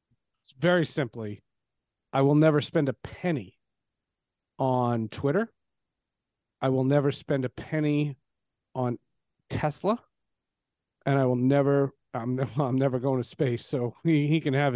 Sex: male